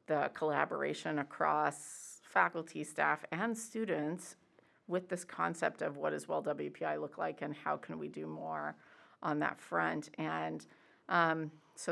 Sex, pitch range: female, 155-200 Hz